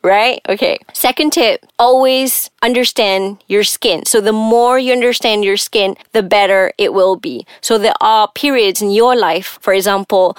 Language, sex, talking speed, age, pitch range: English, female, 170 wpm, 20-39, 200-255 Hz